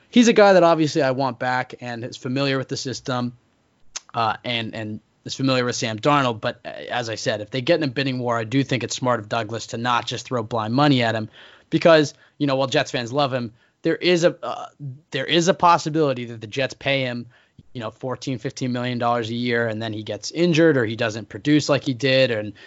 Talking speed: 235 wpm